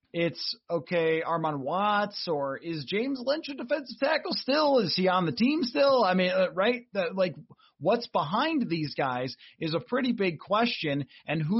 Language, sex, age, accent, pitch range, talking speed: English, male, 30-49, American, 155-205 Hz, 170 wpm